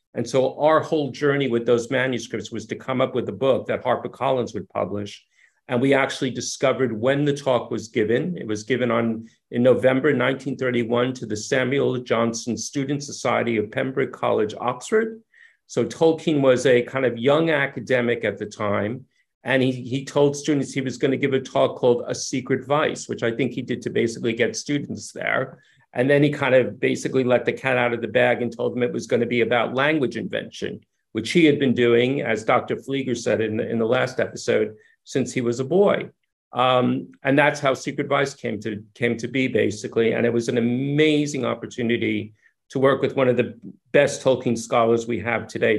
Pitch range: 120-140 Hz